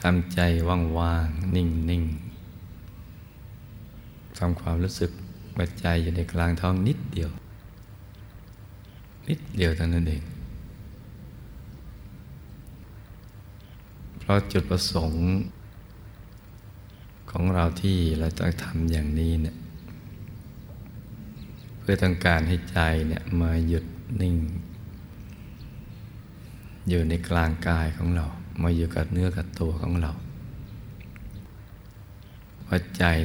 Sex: male